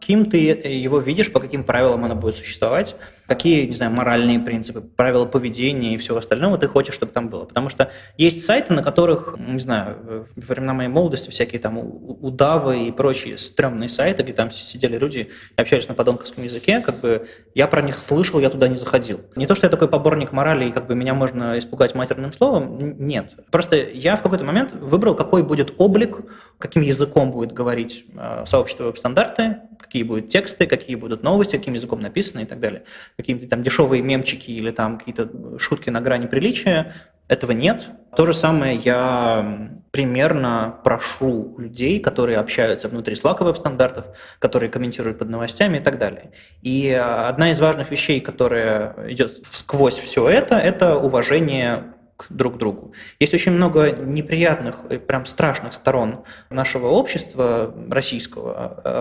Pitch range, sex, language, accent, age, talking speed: 120-155 Hz, male, Russian, native, 20-39, 165 wpm